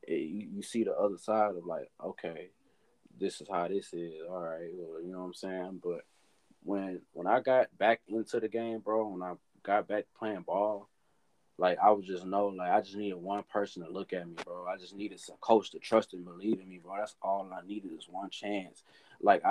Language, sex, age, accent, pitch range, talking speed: English, male, 20-39, American, 95-110 Hz, 230 wpm